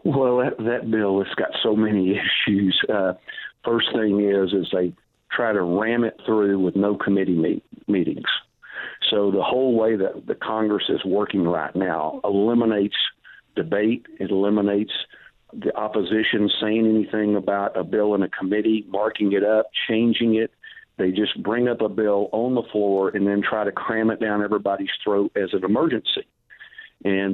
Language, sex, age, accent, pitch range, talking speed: English, male, 50-69, American, 100-110 Hz, 165 wpm